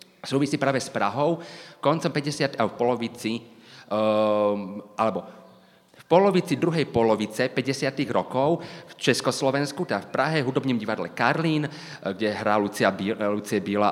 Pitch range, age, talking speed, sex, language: 115-150 Hz, 30-49, 140 wpm, male, Slovak